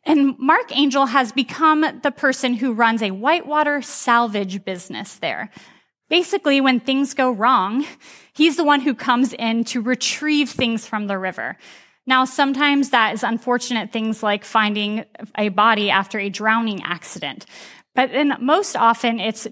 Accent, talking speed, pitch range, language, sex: American, 155 wpm, 225-295 Hz, English, female